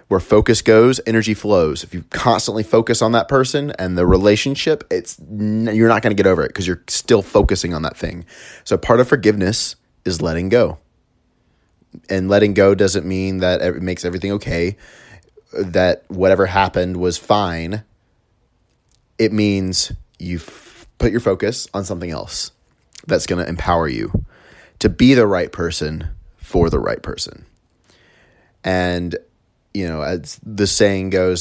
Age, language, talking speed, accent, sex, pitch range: 30-49, English, 155 wpm, American, male, 90-115 Hz